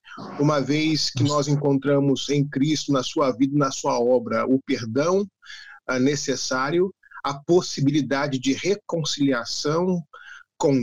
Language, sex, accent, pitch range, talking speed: Portuguese, male, Brazilian, 140-180 Hz, 115 wpm